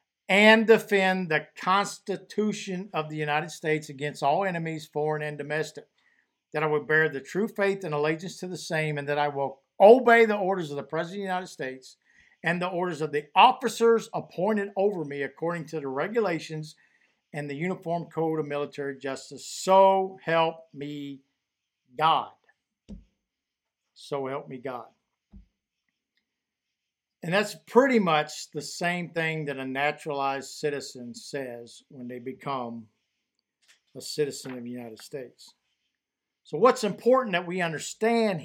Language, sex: English, male